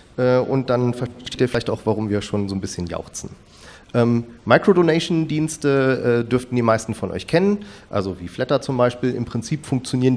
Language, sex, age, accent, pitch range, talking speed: German, male, 40-59, German, 100-125 Hz, 170 wpm